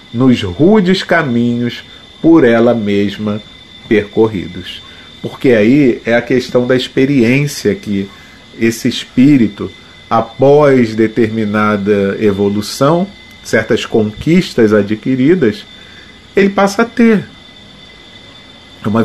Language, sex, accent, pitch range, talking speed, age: Portuguese, male, Brazilian, 105-155 Hz, 90 wpm, 40-59